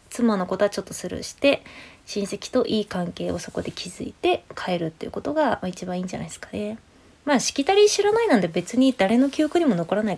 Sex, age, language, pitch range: female, 20-39, Japanese, 185-255 Hz